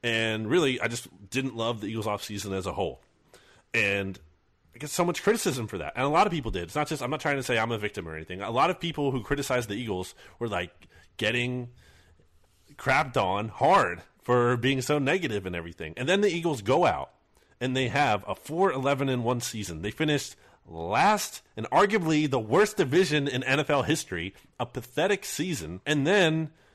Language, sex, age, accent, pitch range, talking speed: English, male, 30-49, American, 105-145 Hz, 195 wpm